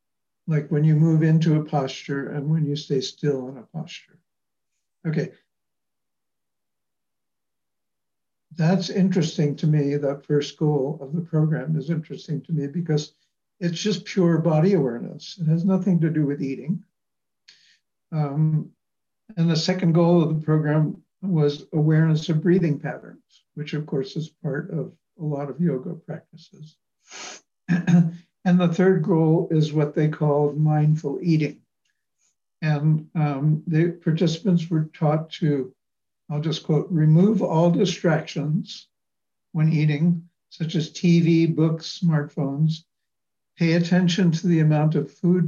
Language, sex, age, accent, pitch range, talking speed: English, male, 60-79, American, 145-170 Hz, 135 wpm